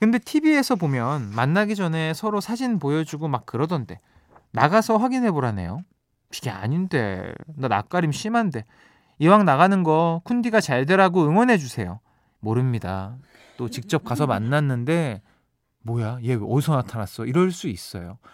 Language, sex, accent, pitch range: Korean, male, native, 120-180 Hz